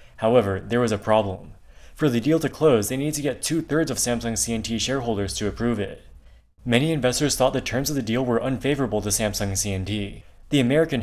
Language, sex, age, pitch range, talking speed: English, male, 20-39, 105-140 Hz, 200 wpm